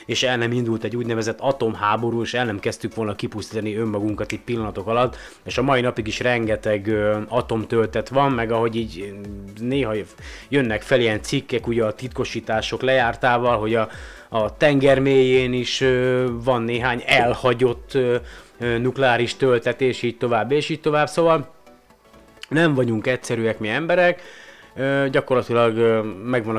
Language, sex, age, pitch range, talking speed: Hungarian, male, 30-49, 105-125 Hz, 140 wpm